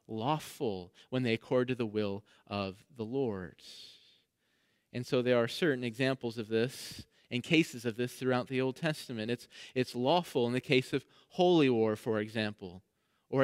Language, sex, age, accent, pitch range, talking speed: English, male, 30-49, American, 120-165 Hz, 170 wpm